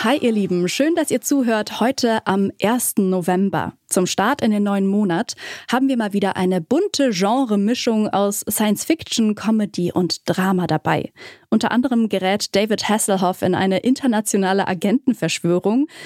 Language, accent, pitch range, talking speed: German, German, 190-245 Hz, 145 wpm